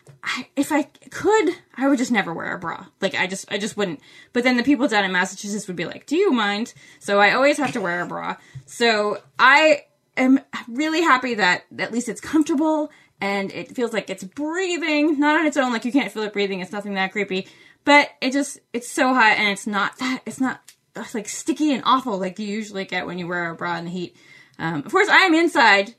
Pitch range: 195-295 Hz